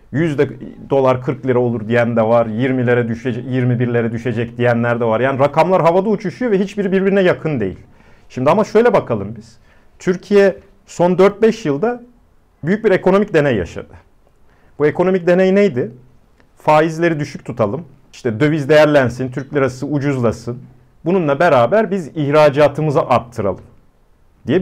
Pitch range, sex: 120-160 Hz, male